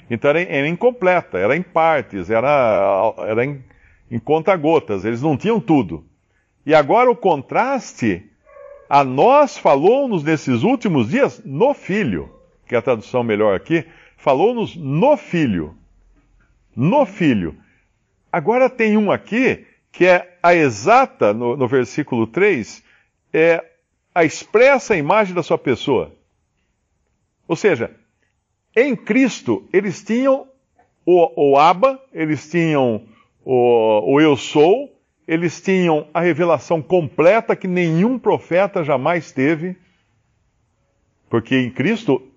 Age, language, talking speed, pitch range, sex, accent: 60-79, Portuguese, 120 wpm, 130-205 Hz, male, Brazilian